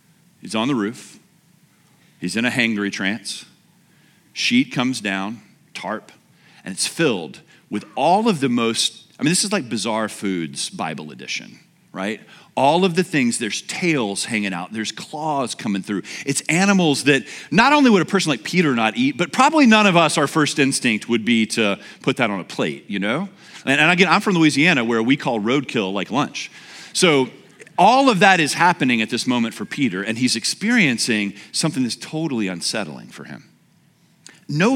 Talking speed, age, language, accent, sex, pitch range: 180 wpm, 40-59, English, American, male, 115-185 Hz